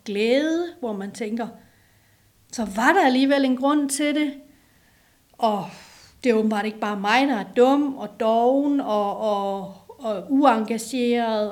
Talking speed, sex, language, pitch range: 150 wpm, female, Danish, 215-265 Hz